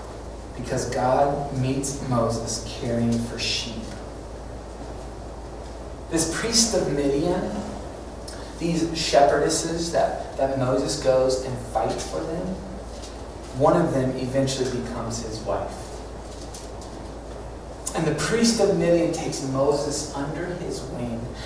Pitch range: 110-140 Hz